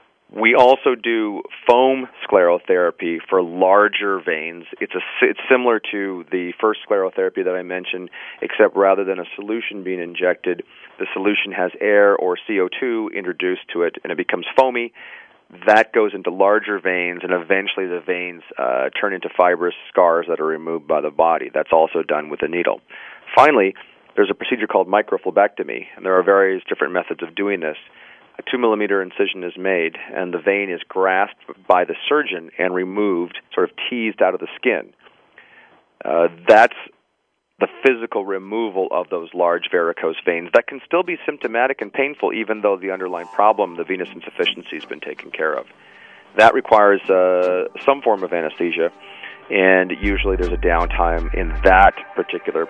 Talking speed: 170 wpm